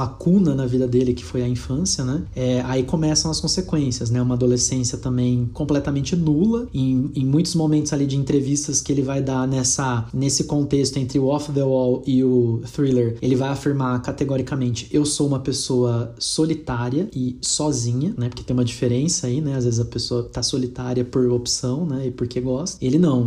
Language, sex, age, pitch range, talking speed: Portuguese, male, 20-39, 125-150 Hz, 195 wpm